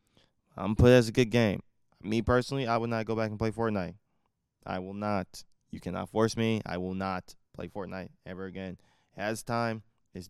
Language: English